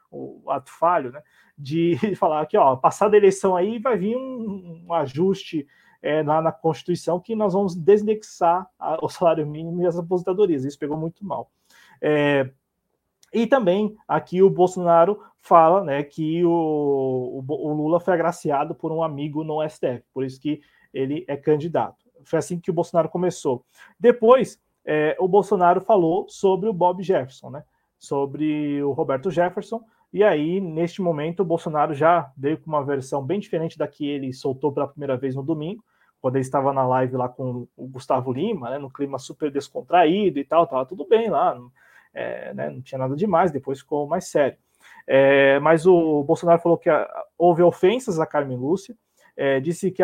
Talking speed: 175 wpm